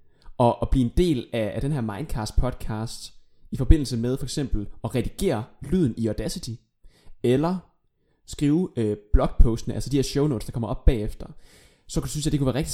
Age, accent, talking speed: 20-39, native, 195 wpm